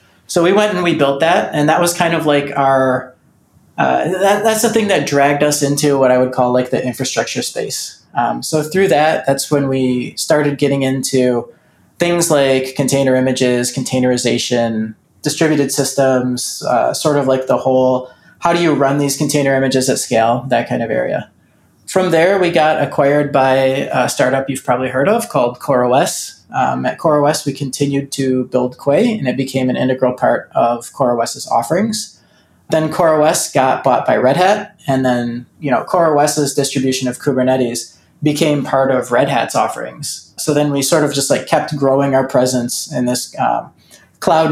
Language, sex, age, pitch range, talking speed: English, male, 20-39, 130-150 Hz, 180 wpm